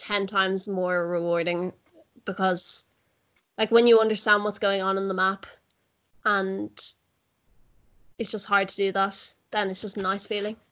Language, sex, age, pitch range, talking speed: English, female, 20-39, 190-220 Hz, 155 wpm